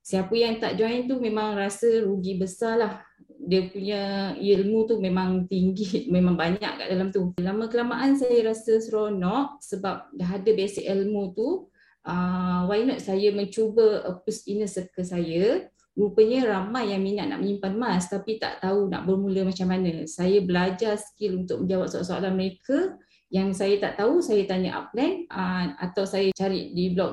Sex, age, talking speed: female, 20-39, 165 wpm